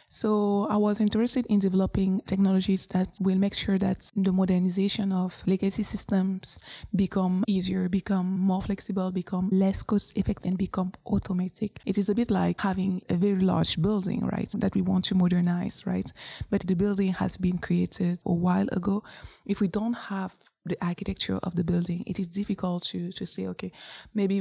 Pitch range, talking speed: 180-195 Hz, 175 wpm